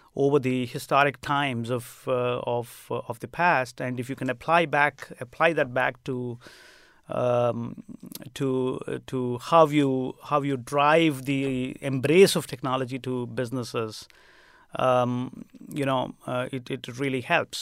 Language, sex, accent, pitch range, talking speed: English, male, Indian, 130-155 Hz, 145 wpm